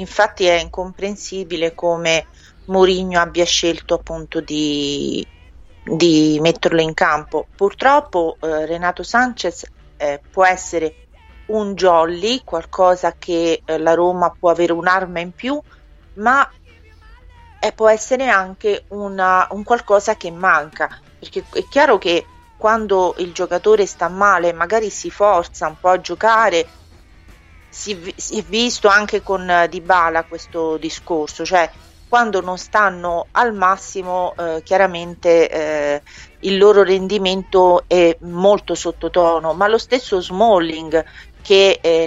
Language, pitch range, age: Italian, 165-195 Hz, 40-59